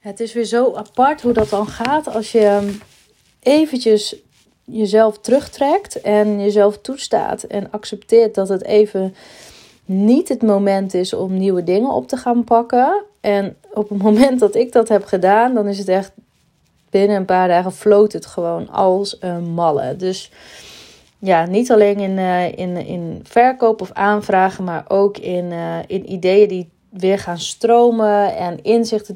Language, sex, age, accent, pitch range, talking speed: Dutch, female, 30-49, Dutch, 180-220 Hz, 155 wpm